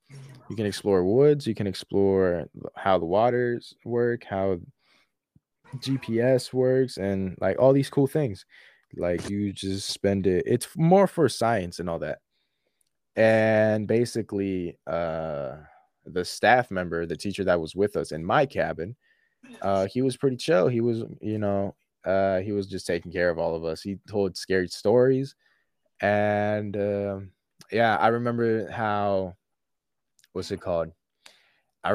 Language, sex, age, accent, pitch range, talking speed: English, male, 20-39, American, 95-115 Hz, 150 wpm